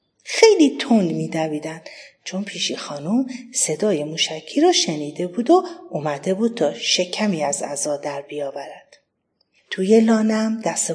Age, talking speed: 40-59, 125 wpm